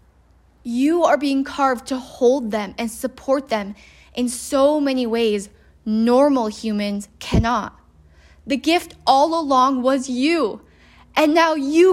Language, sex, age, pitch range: English, female, 10-29, 215-295 Hz